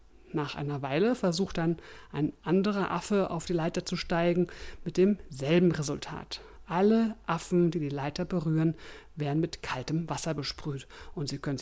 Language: German